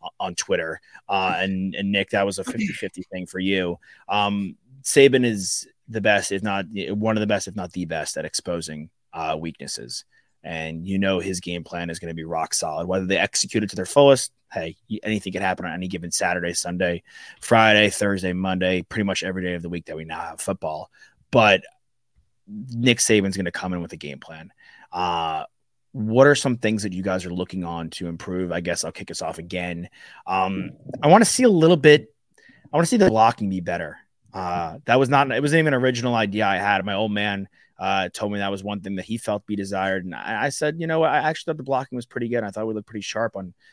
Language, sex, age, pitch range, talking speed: English, male, 30-49, 90-110 Hz, 235 wpm